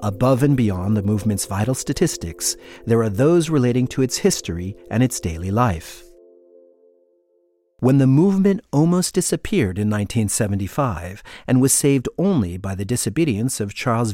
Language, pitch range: English, 105-155 Hz